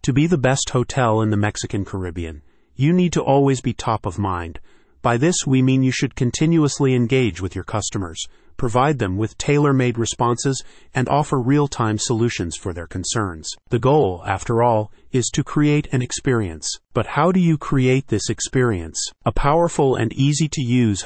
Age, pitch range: 40-59, 105-135 Hz